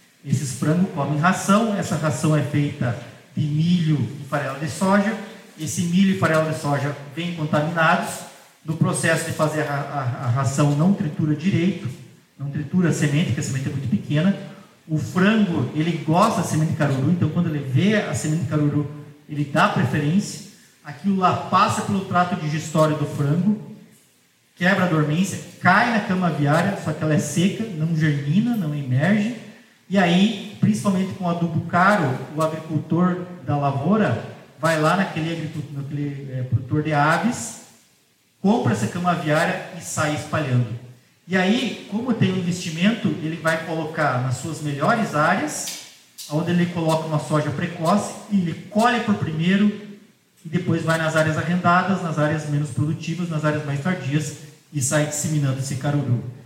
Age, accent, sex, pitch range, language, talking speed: 40-59, Brazilian, male, 150-185 Hz, Portuguese, 160 wpm